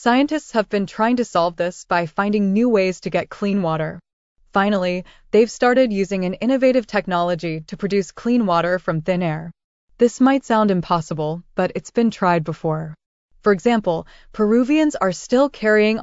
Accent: American